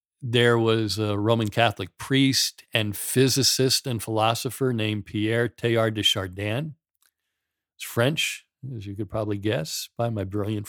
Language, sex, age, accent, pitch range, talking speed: English, male, 50-69, American, 105-125 Hz, 140 wpm